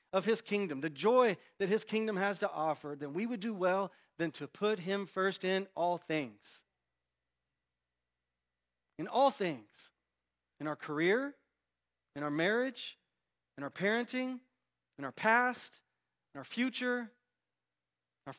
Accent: American